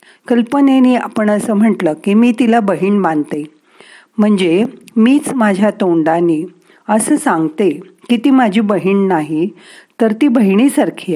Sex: female